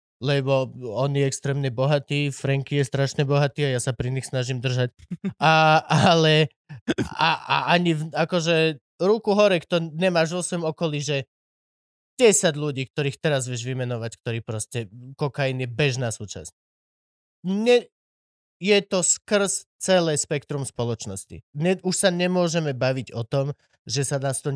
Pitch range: 135-175 Hz